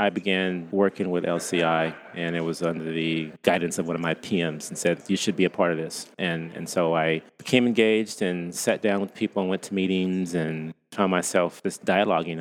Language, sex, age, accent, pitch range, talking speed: English, male, 30-49, American, 85-95 Hz, 220 wpm